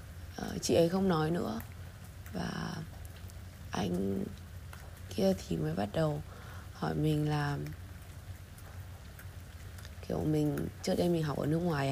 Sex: female